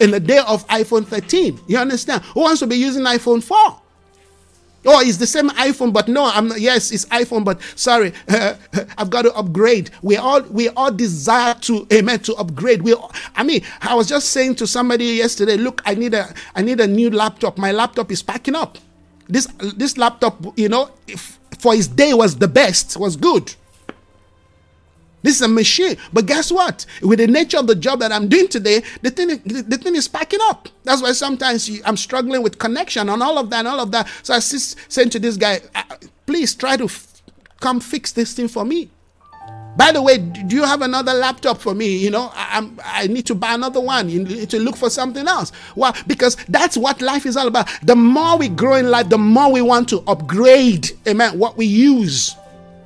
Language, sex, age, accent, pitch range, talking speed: English, male, 50-69, Nigerian, 210-260 Hz, 210 wpm